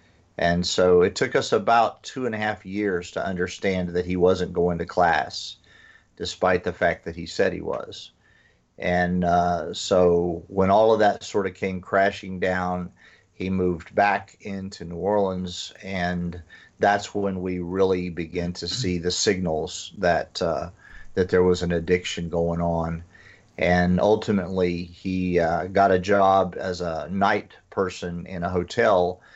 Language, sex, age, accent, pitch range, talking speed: English, male, 40-59, American, 90-100 Hz, 160 wpm